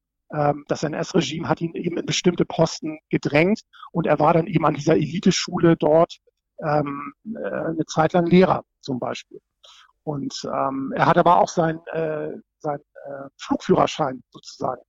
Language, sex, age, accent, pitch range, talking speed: German, male, 50-69, German, 150-170 Hz, 140 wpm